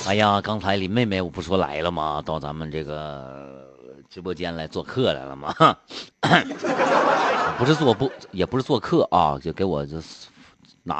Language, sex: Chinese, male